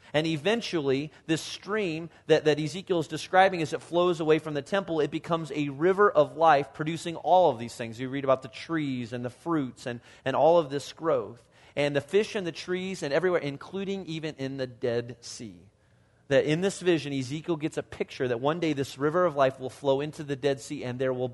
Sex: male